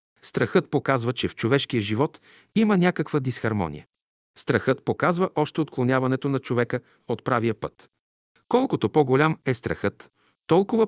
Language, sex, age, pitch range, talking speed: Bulgarian, male, 50-69, 115-150 Hz, 125 wpm